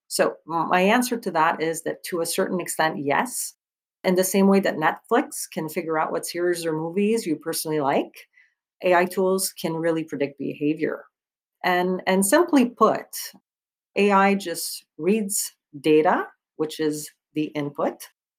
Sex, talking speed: female, 150 wpm